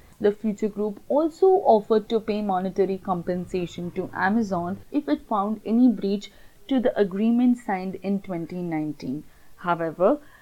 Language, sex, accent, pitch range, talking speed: English, female, Indian, 185-235 Hz, 130 wpm